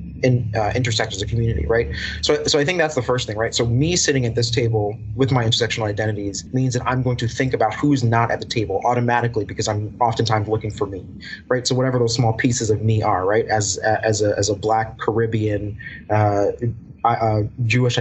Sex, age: male, 30-49